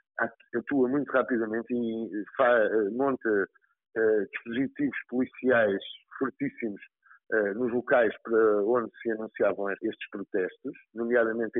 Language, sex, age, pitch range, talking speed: Portuguese, male, 50-69, 115-170 Hz, 90 wpm